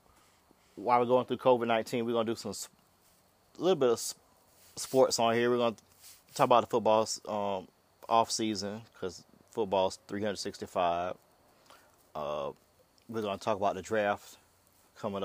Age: 30-49